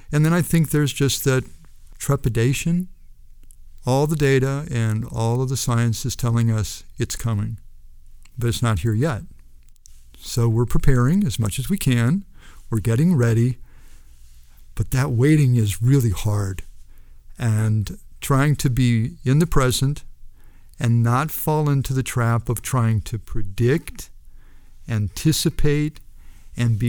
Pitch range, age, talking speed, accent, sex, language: 95-140 Hz, 50-69, 140 wpm, American, male, English